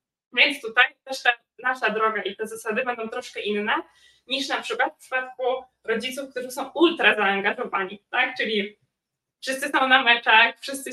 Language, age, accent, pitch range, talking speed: Polish, 20-39, native, 220-250 Hz, 160 wpm